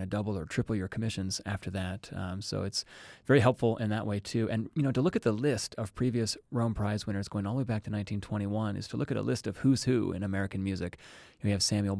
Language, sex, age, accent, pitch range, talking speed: English, male, 30-49, American, 100-125 Hz, 270 wpm